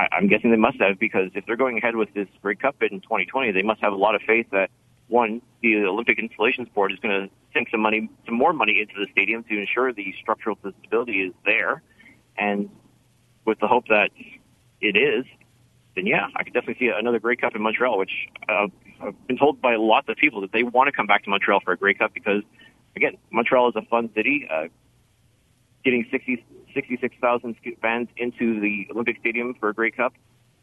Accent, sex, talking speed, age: American, male, 210 wpm, 40-59